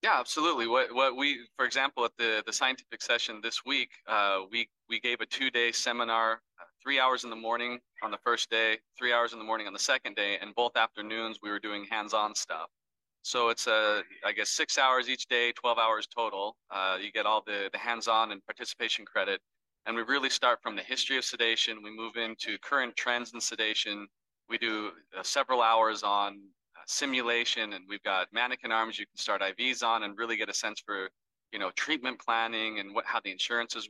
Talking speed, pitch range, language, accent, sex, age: 215 wpm, 105-120 Hz, English, American, male, 30-49